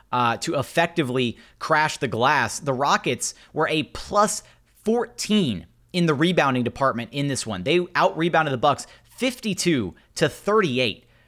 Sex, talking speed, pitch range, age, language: male, 140 wpm, 125-155 Hz, 30-49, English